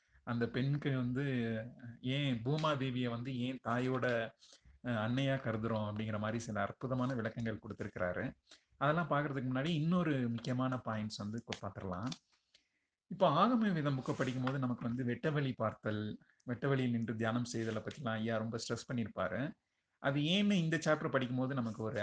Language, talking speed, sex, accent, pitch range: Tamil, 135 wpm, male, native, 115-140 Hz